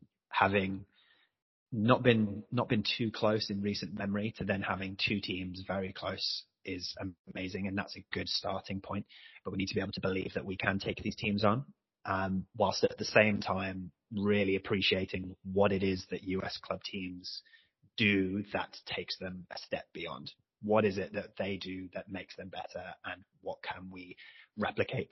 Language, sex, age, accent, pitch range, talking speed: English, male, 30-49, British, 95-110 Hz, 185 wpm